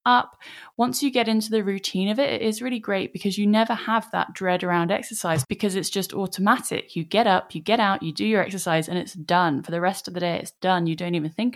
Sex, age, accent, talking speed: female, 10-29, British, 260 wpm